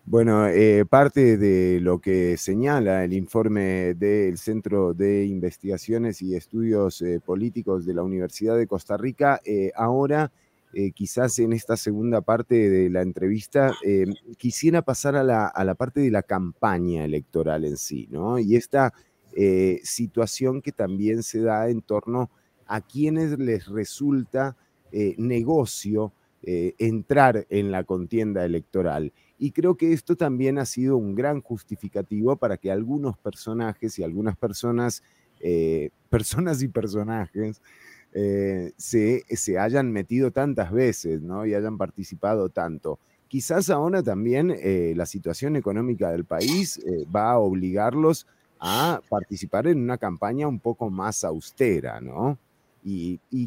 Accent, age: Argentinian, 30-49